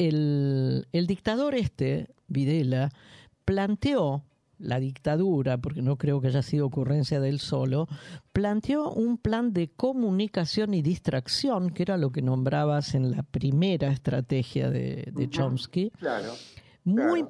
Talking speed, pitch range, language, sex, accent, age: 130 wpm, 130-190 Hz, Spanish, female, Argentinian, 50-69